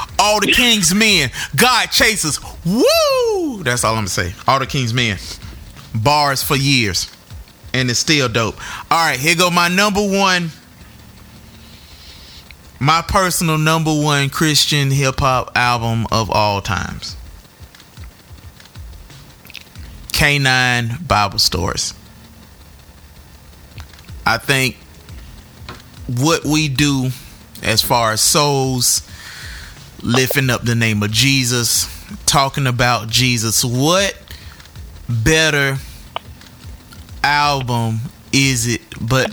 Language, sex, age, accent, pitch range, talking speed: English, male, 30-49, American, 110-145 Hz, 105 wpm